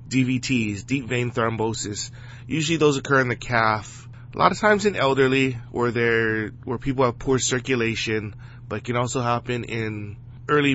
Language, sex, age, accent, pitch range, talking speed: English, male, 20-39, American, 110-125 Hz, 160 wpm